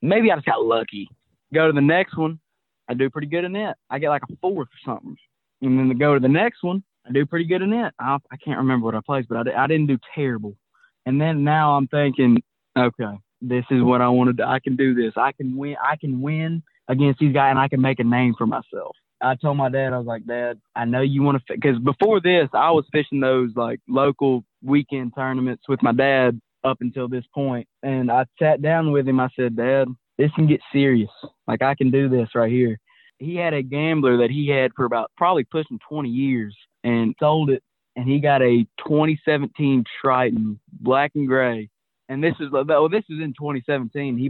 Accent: American